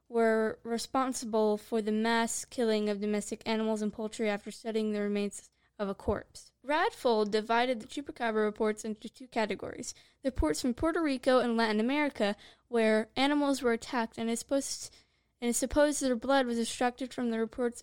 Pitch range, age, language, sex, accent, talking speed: 225-265 Hz, 10-29, English, female, American, 170 wpm